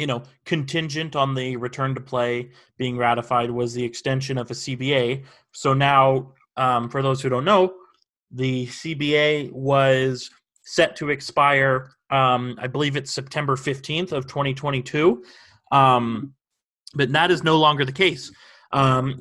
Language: English